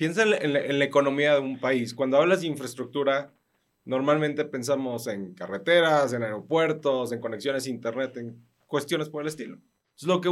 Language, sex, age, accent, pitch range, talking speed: Spanish, male, 30-49, Mexican, 125-155 Hz, 180 wpm